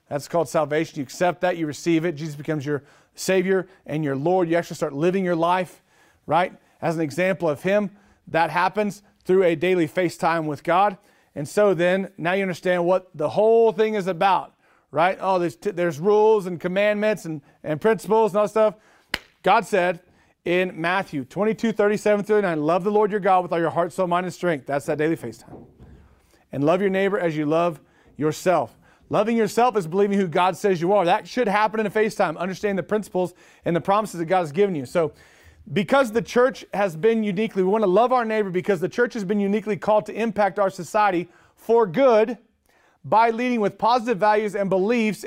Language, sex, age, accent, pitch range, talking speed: English, male, 40-59, American, 170-210 Hz, 205 wpm